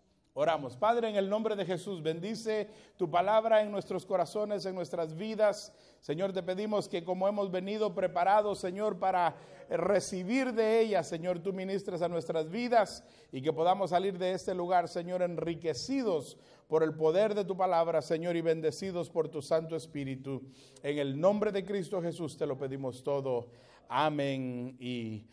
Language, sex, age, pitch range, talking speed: Spanish, male, 50-69, 155-205 Hz, 165 wpm